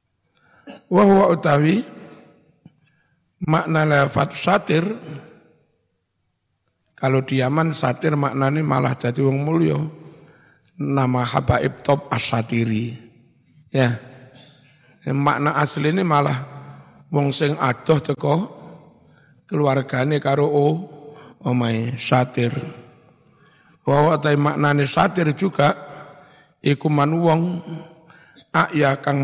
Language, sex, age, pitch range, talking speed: Indonesian, male, 60-79, 130-150 Hz, 70 wpm